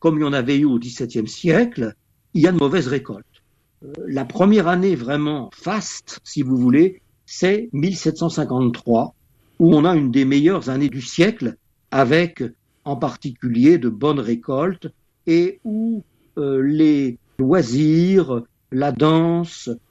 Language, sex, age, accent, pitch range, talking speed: Italian, male, 60-79, French, 135-185 Hz, 145 wpm